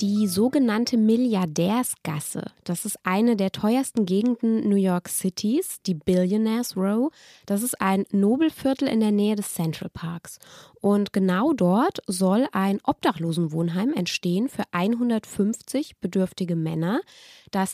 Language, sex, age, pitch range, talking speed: German, female, 20-39, 185-240 Hz, 125 wpm